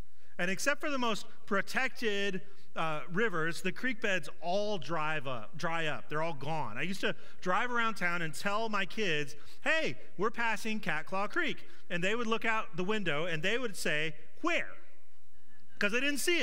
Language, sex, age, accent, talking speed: English, male, 40-59, American, 175 wpm